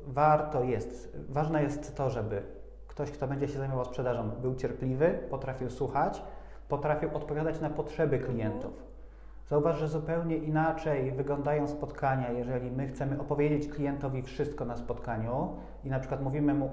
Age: 30-49